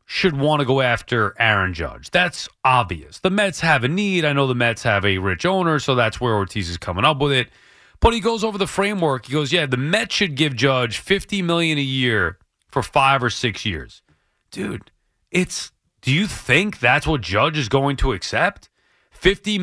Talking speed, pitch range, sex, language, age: 205 wpm, 135-195 Hz, male, English, 30-49